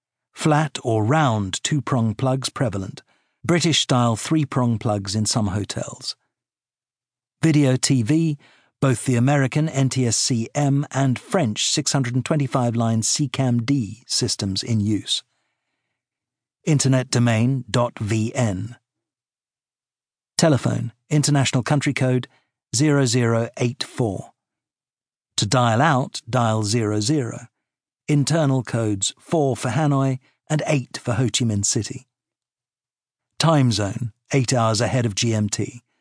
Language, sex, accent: English, male, British